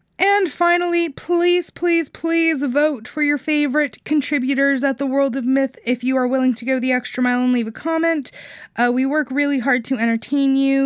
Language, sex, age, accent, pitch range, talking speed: English, female, 20-39, American, 215-275 Hz, 200 wpm